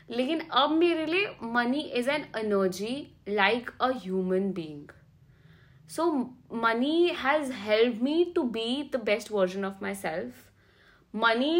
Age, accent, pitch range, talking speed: 30-49, native, 205-270 Hz, 135 wpm